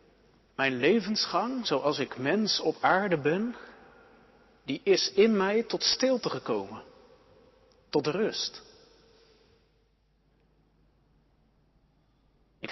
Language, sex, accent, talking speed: Dutch, male, Dutch, 85 wpm